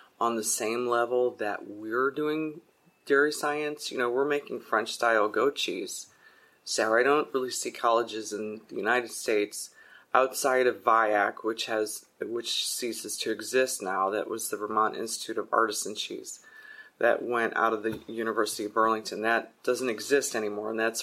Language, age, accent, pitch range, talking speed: English, 30-49, American, 110-120 Hz, 170 wpm